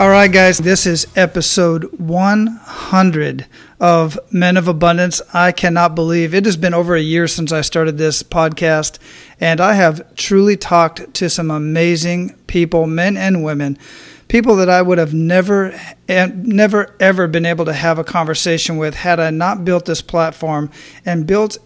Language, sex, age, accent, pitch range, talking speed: English, male, 40-59, American, 165-185 Hz, 165 wpm